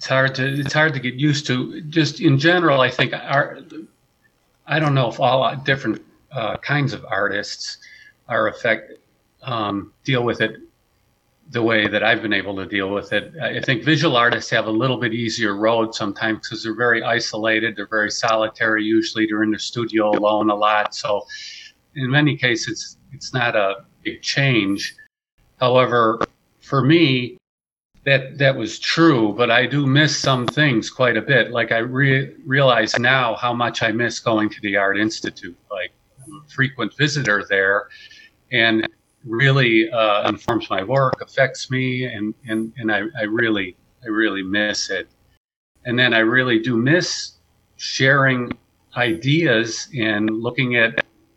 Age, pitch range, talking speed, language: 50-69, 110-140 Hz, 165 wpm, English